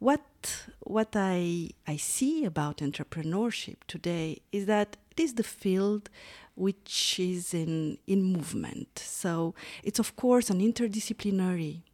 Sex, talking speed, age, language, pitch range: female, 125 wpm, 40-59, English, 165-220 Hz